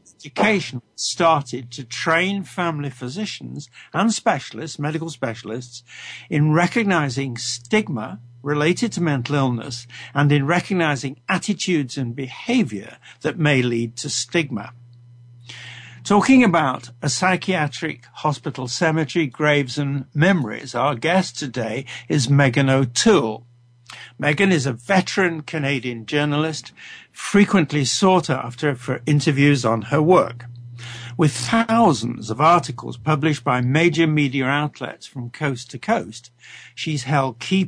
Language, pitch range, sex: English, 125-165 Hz, male